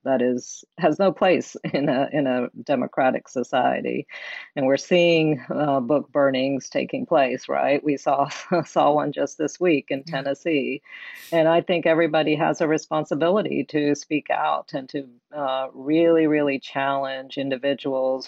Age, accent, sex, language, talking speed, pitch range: 40-59, American, female, English, 150 wpm, 130-140 Hz